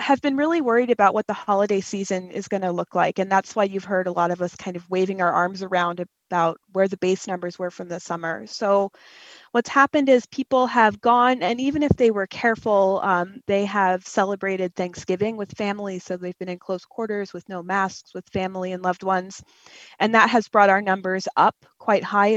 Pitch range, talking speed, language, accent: 185-225 Hz, 215 wpm, English, American